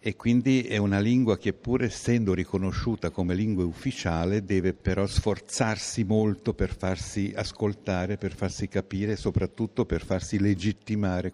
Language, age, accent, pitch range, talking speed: Italian, 60-79, native, 95-110 Hz, 145 wpm